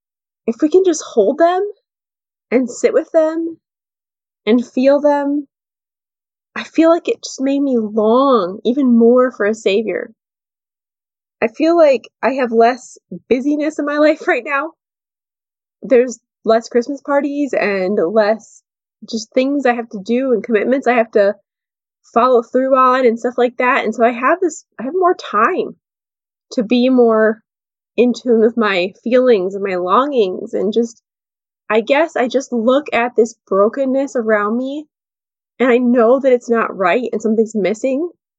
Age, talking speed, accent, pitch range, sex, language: 20-39, 165 wpm, American, 225-285 Hz, female, English